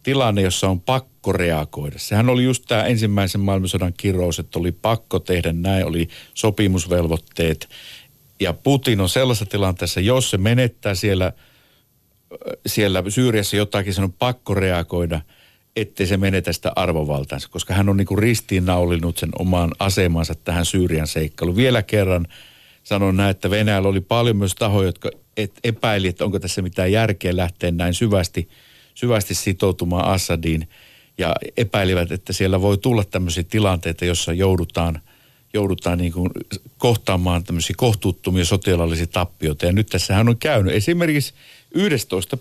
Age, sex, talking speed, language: 50-69, male, 140 wpm, Finnish